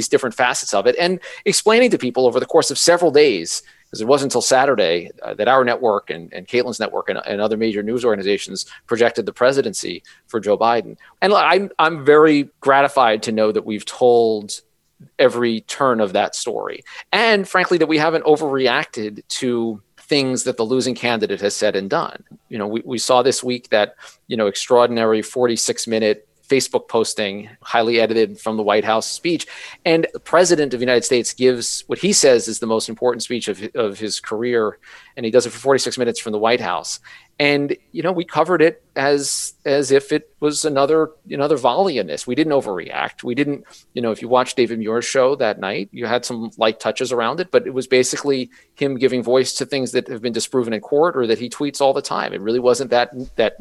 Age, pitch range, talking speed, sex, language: 40-59, 115-145 Hz, 210 wpm, male, English